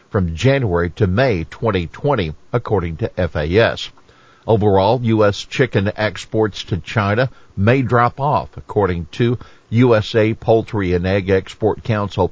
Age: 50-69